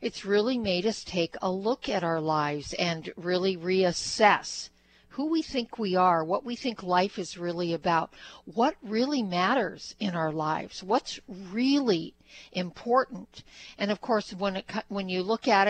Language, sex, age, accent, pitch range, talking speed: English, female, 60-79, American, 175-220 Hz, 165 wpm